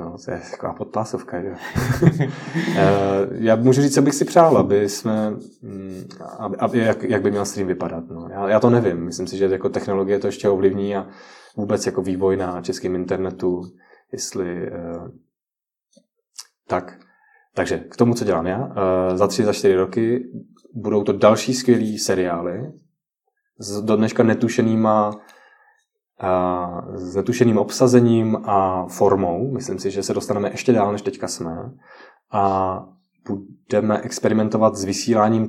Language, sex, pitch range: Czech, male, 95-120 Hz